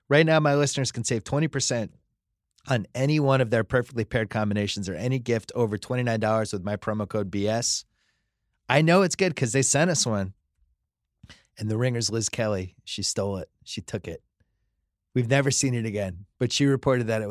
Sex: male